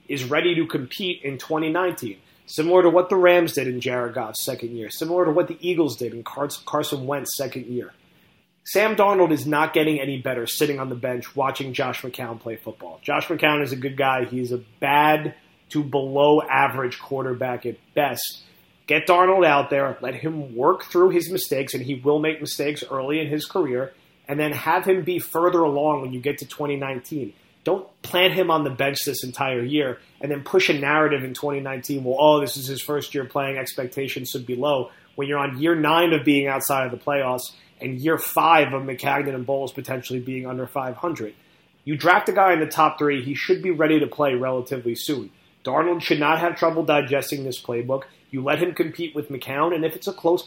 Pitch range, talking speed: 130-160 Hz, 210 wpm